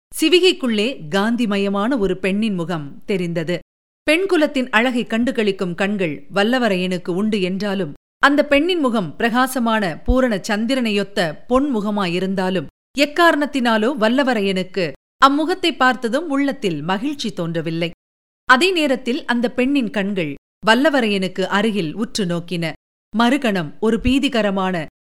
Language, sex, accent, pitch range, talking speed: Tamil, female, native, 185-270 Hz, 95 wpm